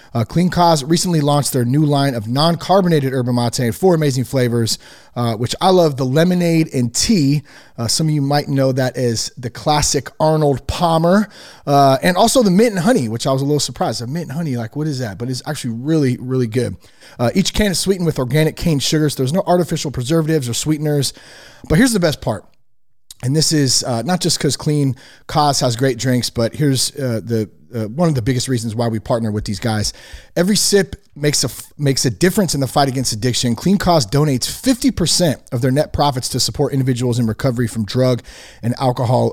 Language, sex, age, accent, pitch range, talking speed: English, male, 30-49, American, 125-160 Hz, 215 wpm